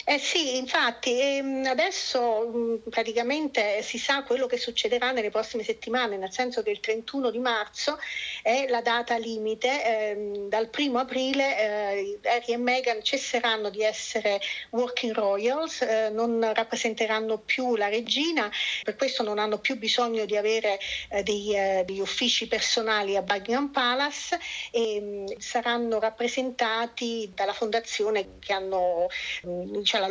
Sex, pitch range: female, 215-245 Hz